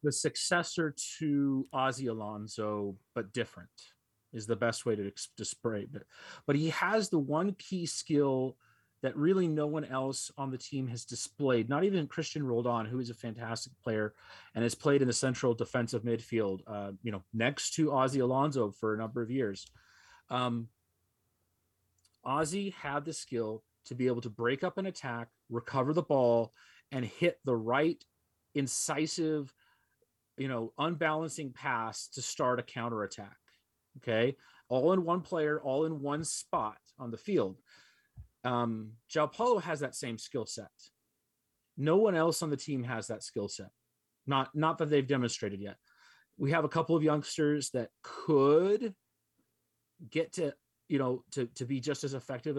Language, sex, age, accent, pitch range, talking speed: English, male, 30-49, American, 115-150 Hz, 165 wpm